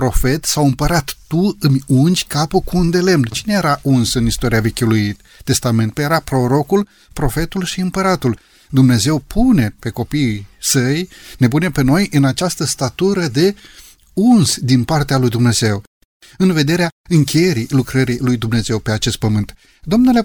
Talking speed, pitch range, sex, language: 150 wpm, 120-175 Hz, male, Romanian